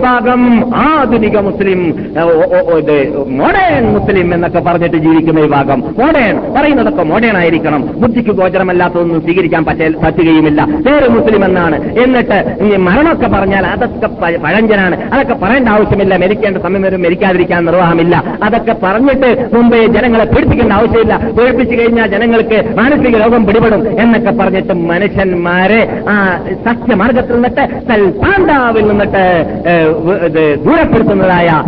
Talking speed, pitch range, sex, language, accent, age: 100 wpm, 180-245 Hz, male, Malayalam, native, 50-69